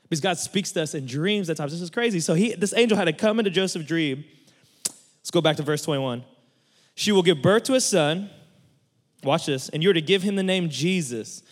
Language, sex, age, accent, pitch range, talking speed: English, male, 20-39, American, 145-185 Hz, 240 wpm